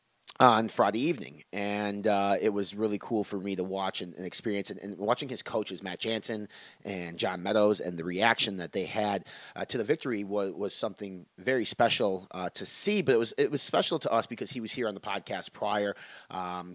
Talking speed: 220 wpm